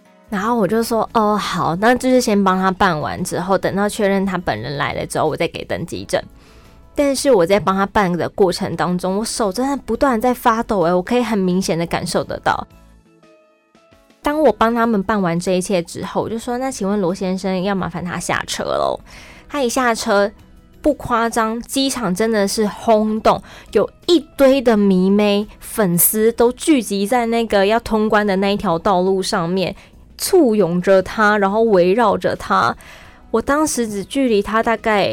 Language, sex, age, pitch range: Chinese, female, 20-39, 190-245 Hz